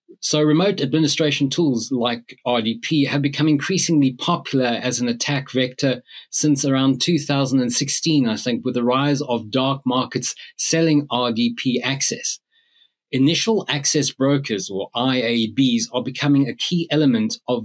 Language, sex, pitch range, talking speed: English, male, 120-155 Hz, 135 wpm